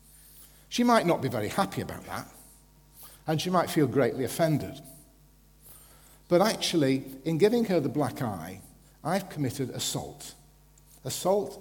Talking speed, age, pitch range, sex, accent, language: 135 wpm, 50-69, 130-165 Hz, male, British, English